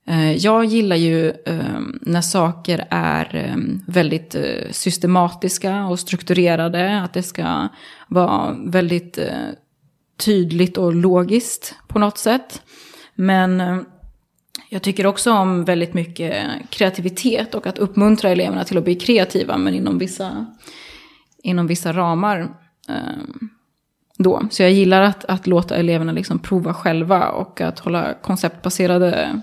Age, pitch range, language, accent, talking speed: 20-39, 175-195 Hz, Swedish, native, 115 wpm